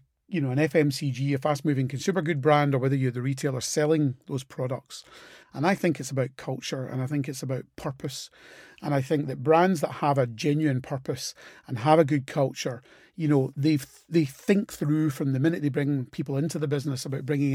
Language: English